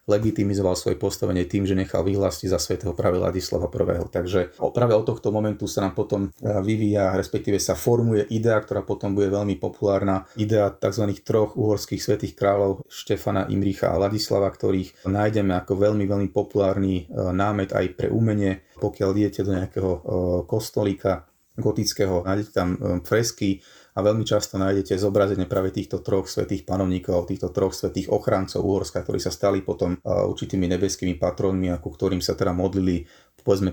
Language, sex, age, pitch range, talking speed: Slovak, male, 30-49, 95-105 Hz, 155 wpm